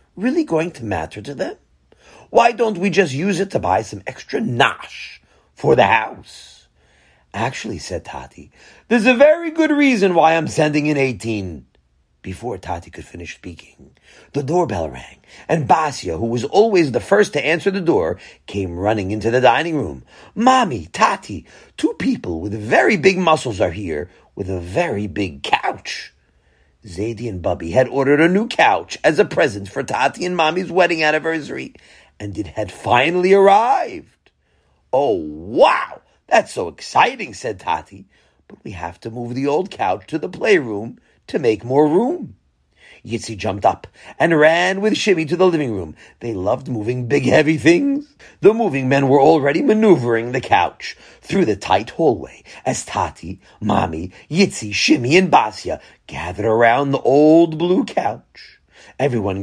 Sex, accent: male, American